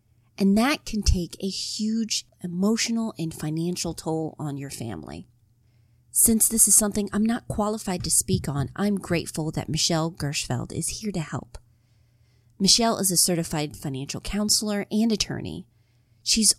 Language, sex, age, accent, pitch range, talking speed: English, female, 30-49, American, 125-195 Hz, 150 wpm